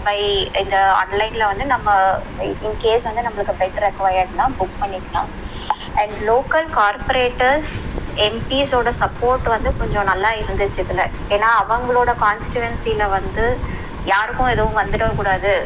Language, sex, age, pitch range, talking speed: Tamil, male, 20-39, 195-240 Hz, 65 wpm